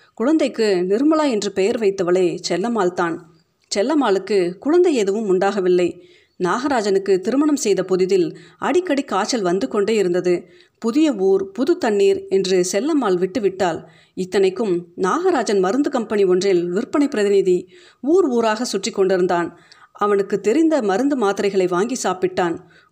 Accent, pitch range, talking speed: native, 185-240 Hz, 115 wpm